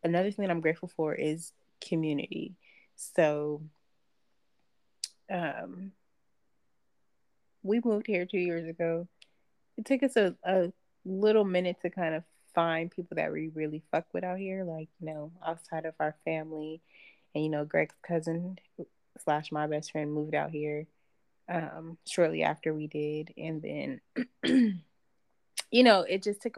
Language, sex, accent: English, female, American